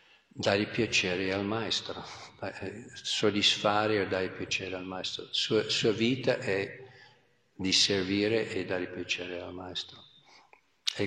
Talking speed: 120 wpm